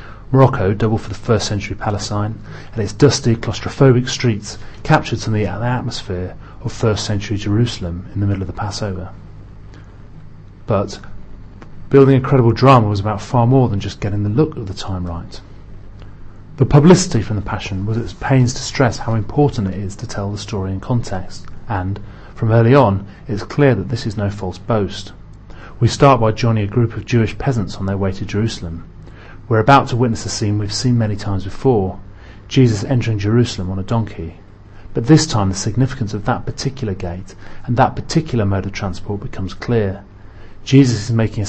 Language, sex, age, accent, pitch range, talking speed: English, male, 30-49, British, 100-120 Hz, 185 wpm